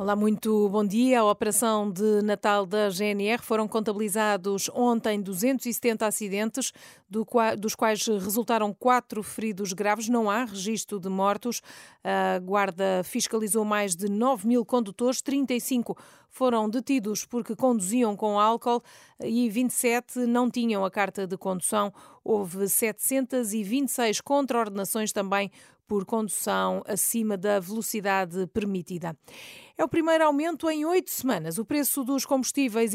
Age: 40-59